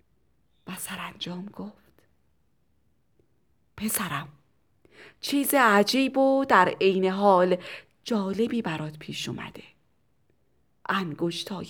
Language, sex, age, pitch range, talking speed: Persian, female, 30-49, 190-285 Hz, 75 wpm